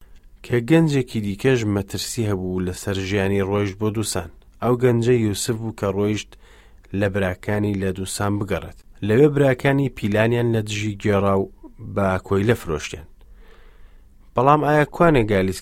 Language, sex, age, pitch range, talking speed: English, male, 30-49, 95-120 Hz, 110 wpm